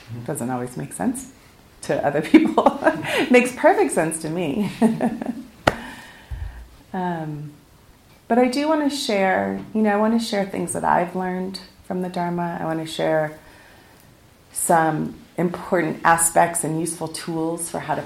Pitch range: 145-185 Hz